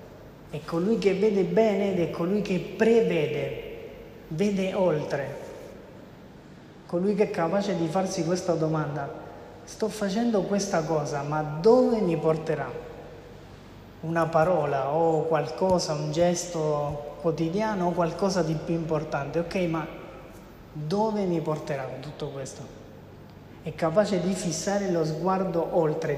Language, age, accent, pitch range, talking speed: Italian, 30-49, native, 155-190 Hz, 125 wpm